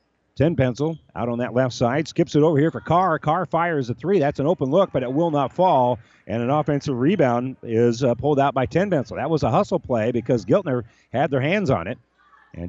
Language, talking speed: English, 235 wpm